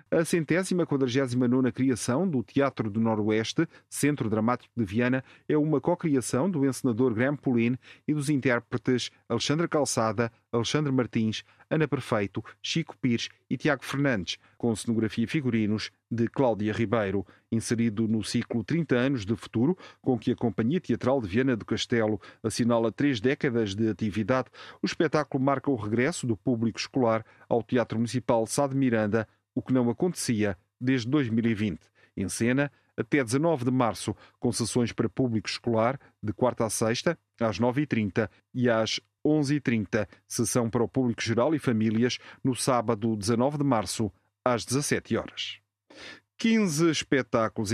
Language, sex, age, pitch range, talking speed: Portuguese, male, 40-59, 110-135 Hz, 150 wpm